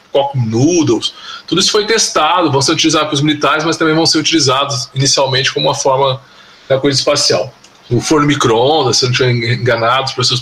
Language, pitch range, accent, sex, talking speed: Portuguese, 140-185 Hz, Brazilian, male, 180 wpm